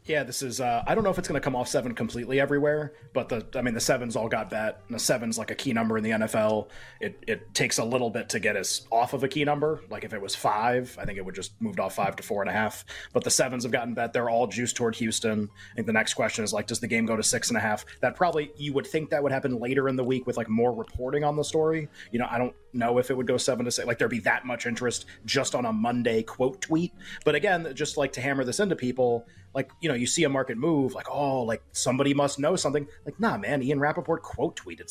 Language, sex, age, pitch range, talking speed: English, male, 30-49, 115-145 Hz, 290 wpm